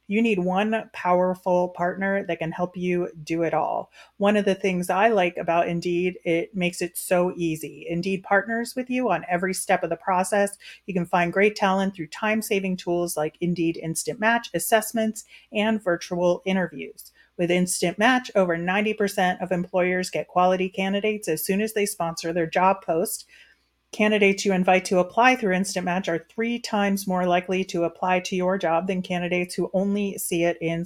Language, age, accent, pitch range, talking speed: English, 30-49, American, 175-205 Hz, 185 wpm